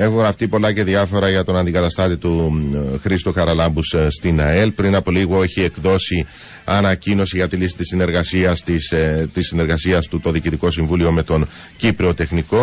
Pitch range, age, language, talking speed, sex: 85-100 Hz, 40-59, Greek, 165 wpm, male